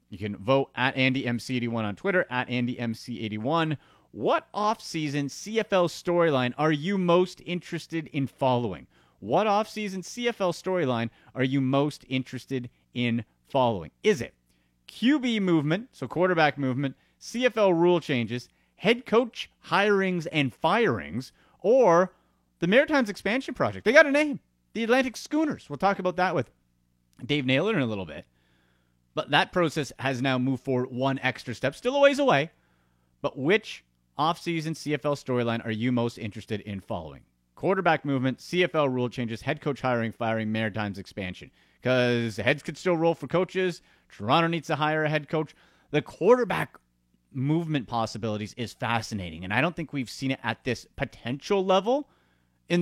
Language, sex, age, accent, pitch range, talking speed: English, male, 30-49, American, 110-170 Hz, 155 wpm